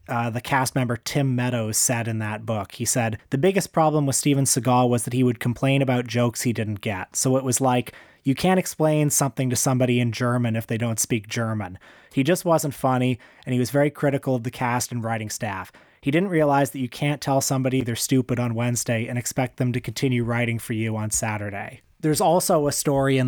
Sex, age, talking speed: male, 30-49, 225 wpm